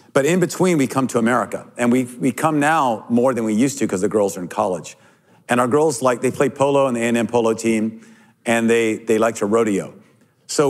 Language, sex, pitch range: English, male, 115-150 Hz